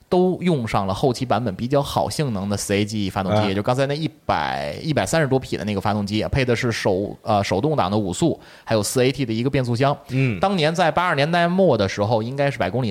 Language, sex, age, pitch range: Chinese, male, 20-39, 105-150 Hz